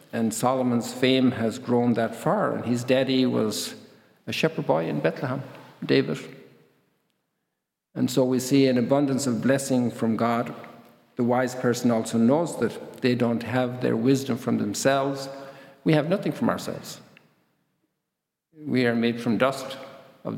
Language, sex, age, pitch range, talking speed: English, male, 50-69, 115-135 Hz, 150 wpm